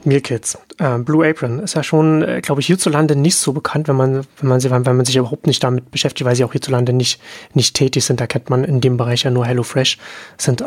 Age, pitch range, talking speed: 30-49, 125-155 Hz, 235 wpm